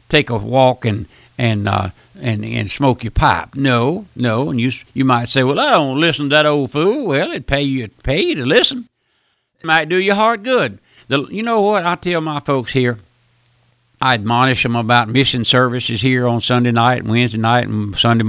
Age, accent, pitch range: 60-79, American, 120-165 Hz